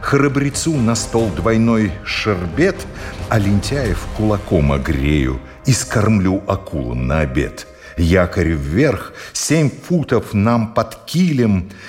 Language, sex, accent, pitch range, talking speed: Russian, male, native, 85-120 Hz, 105 wpm